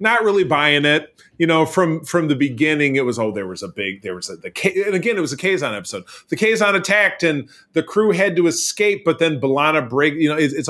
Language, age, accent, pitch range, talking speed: English, 30-49, American, 125-160 Hz, 250 wpm